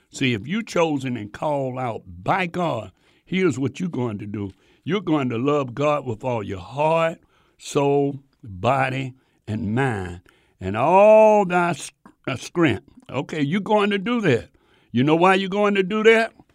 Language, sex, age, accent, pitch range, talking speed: English, male, 60-79, American, 130-185 Hz, 165 wpm